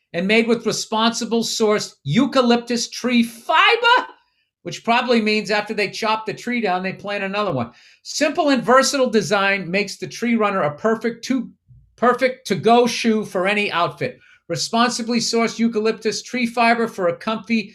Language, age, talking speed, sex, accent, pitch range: English, 50-69, 160 wpm, male, American, 175-230 Hz